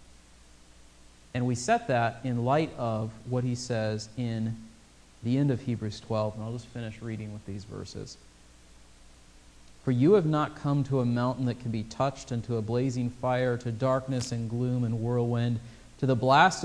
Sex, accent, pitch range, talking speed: male, American, 115-140 Hz, 180 wpm